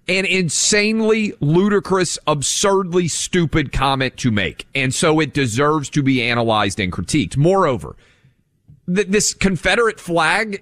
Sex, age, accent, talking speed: male, 40-59, American, 125 wpm